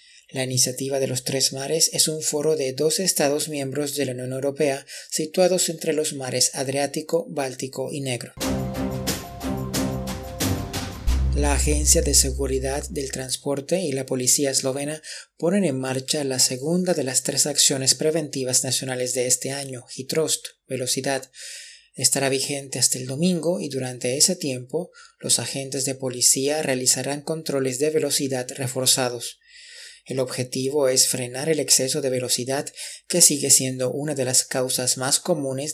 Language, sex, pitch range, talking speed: Spanish, male, 130-150 Hz, 145 wpm